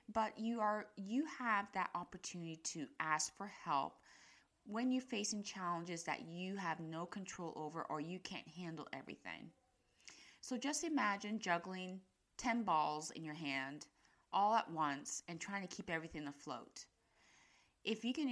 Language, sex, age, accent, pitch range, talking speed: English, female, 30-49, American, 160-205 Hz, 155 wpm